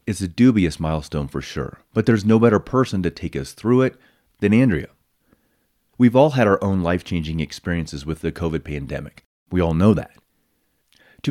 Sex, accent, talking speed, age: male, American, 180 wpm, 30-49